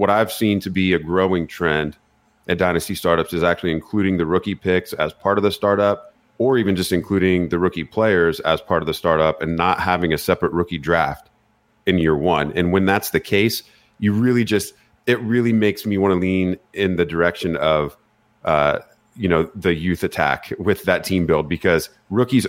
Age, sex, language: 30-49, male, English